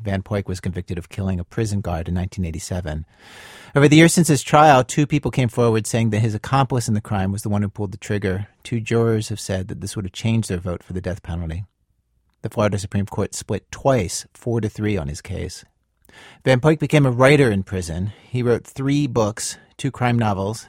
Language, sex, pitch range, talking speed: English, male, 95-120 Hz, 220 wpm